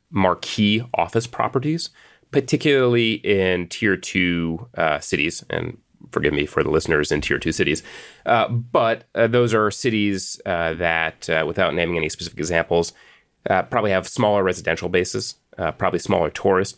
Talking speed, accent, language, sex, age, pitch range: 150 wpm, American, English, male, 30-49, 85-115 Hz